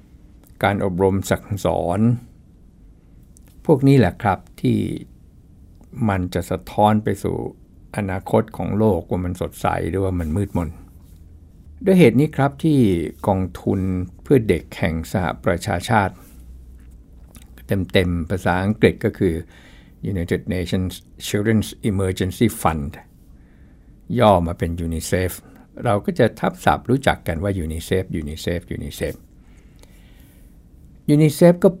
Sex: male